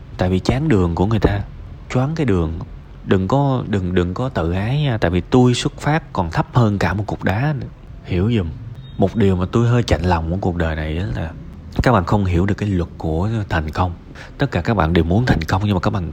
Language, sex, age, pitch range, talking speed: Vietnamese, male, 20-39, 90-130 Hz, 255 wpm